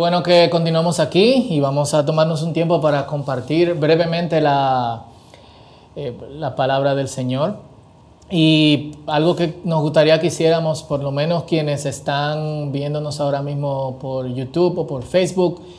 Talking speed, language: 150 wpm, Spanish